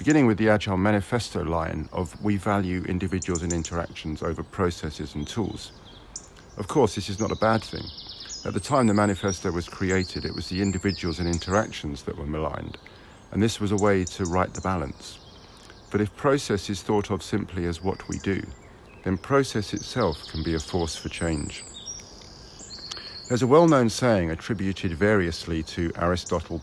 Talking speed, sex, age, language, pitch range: 175 wpm, male, 50-69, English, 85-110 Hz